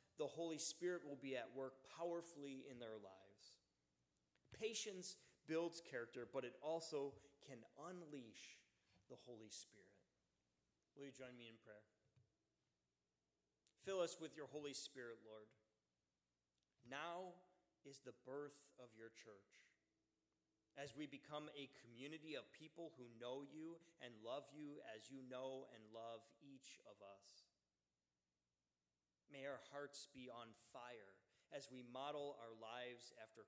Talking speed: 135 wpm